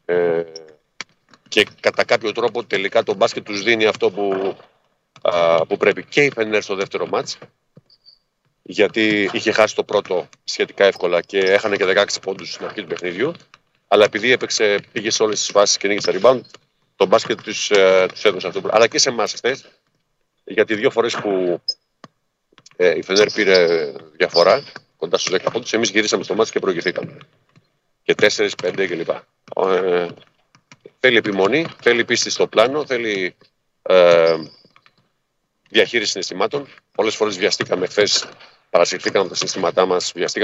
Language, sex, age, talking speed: Greek, male, 40-59, 150 wpm